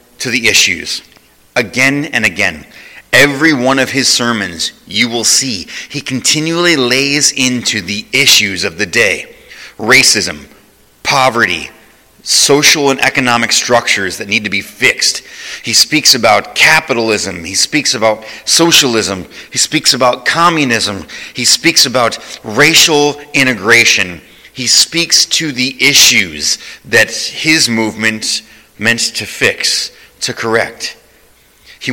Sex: male